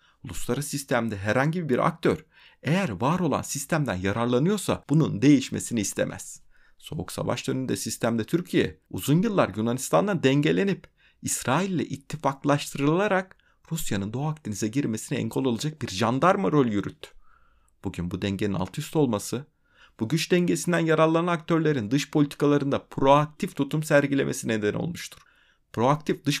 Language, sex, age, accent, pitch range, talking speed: Turkish, male, 30-49, native, 120-170 Hz, 125 wpm